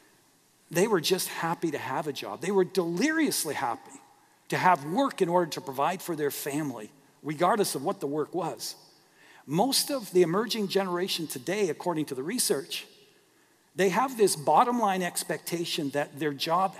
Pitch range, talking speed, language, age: 150-200 Hz, 170 wpm, English, 50-69